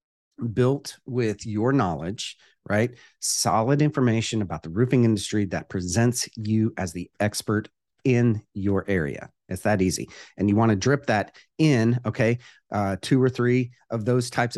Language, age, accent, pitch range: English, 40-59, American, 95-120 Hz